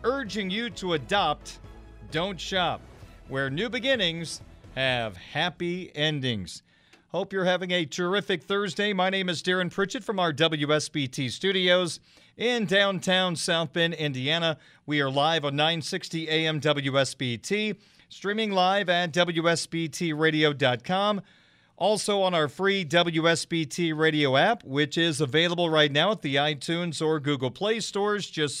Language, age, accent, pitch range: English, 40-59, American, 145-190 Hz